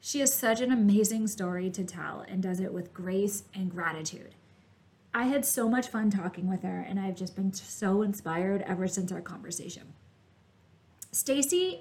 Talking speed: 175 wpm